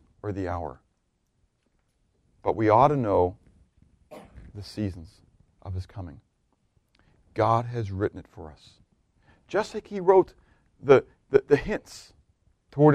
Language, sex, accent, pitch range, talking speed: English, male, American, 95-125 Hz, 130 wpm